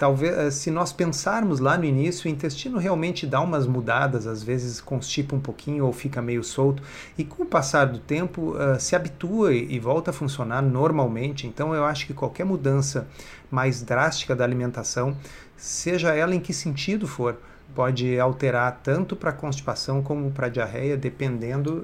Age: 40-59